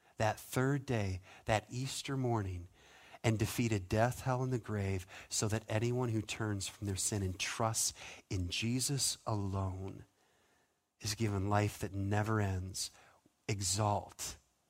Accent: American